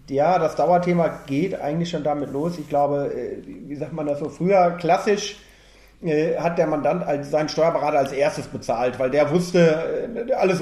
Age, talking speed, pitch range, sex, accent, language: 40-59, 165 wpm, 165-195 Hz, male, German, German